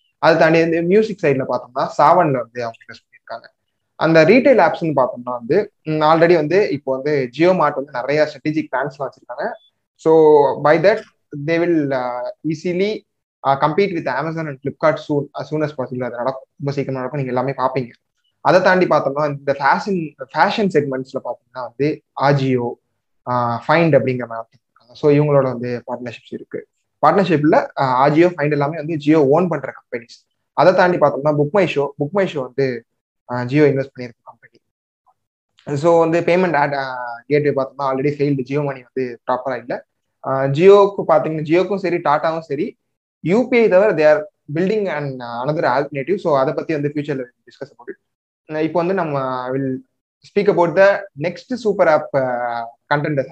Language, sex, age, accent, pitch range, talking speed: Tamil, male, 20-39, native, 130-165 Hz, 135 wpm